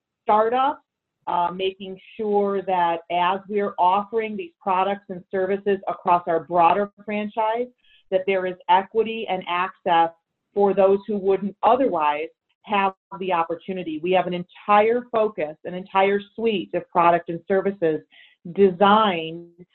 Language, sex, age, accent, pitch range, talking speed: English, female, 40-59, American, 175-210 Hz, 130 wpm